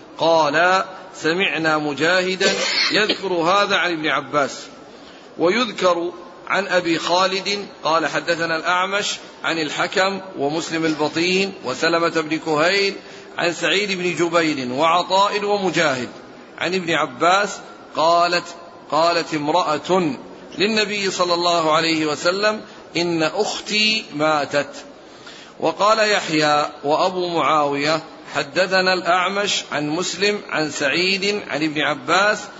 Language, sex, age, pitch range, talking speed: Arabic, male, 40-59, 155-190 Hz, 100 wpm